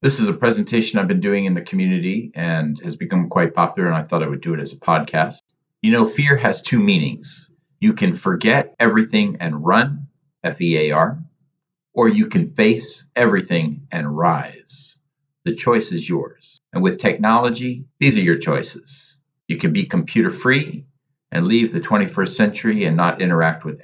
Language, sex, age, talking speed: English, male, 50-69, 175 wpm